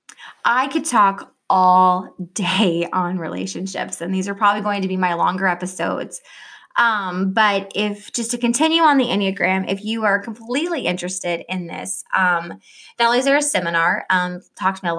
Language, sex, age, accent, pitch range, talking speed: English, female, 20-39, American, 185-240 Hz, 175 wpm